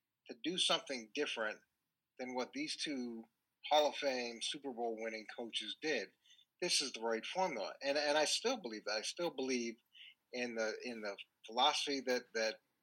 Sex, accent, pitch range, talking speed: male, American, 115-140 Hz, 175 wpm